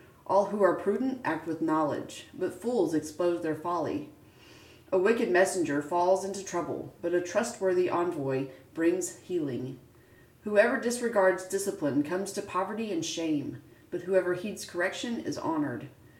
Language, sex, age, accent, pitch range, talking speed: English, female, 30-49, American, 155-210 Hz, 140 wpm